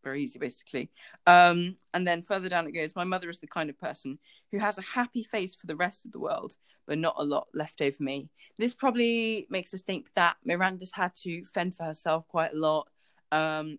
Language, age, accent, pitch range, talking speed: English, 20-39, British, 150-185 Hz, 220 wpm